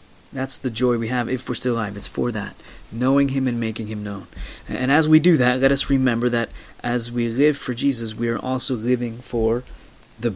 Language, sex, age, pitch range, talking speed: English, male, 30-49, 110-130 Hz, 220 wpm